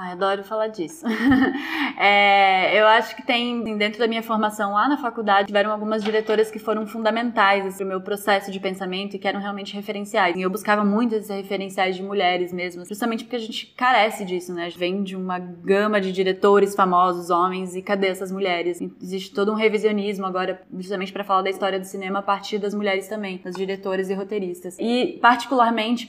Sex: female